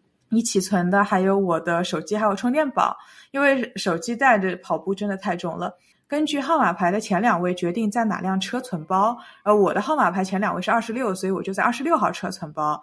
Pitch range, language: 180-235 Hz, Chinese